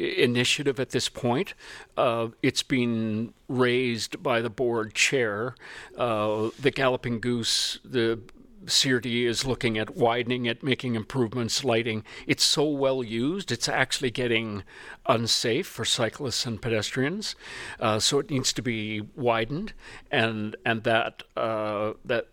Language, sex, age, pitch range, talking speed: English, male, 50-69, 115-130 Hz, 135 wpm